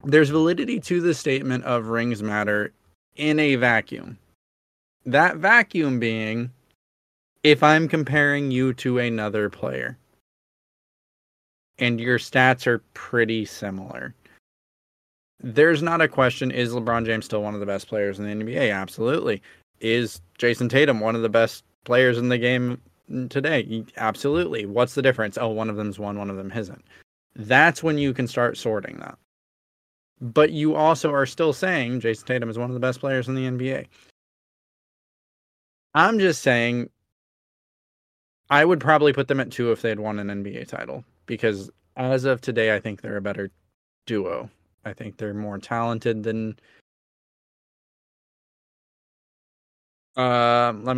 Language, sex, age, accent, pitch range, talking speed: English, male, 20-39, American, 105-130 Hz, 150 wpm